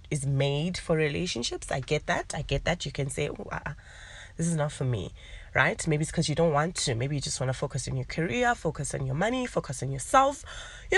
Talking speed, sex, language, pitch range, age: 240 wpm, female, English, 130-165 Hz, 20-39